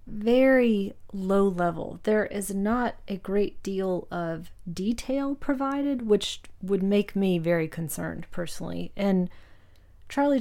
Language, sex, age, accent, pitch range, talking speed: English, female, 30-49, American, 170-210 Hz, 120 wpm